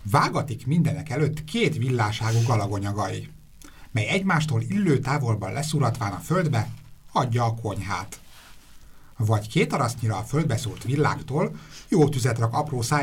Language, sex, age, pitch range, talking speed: Hungarian, male, 60-79, 110-145 Hz, 120 wpm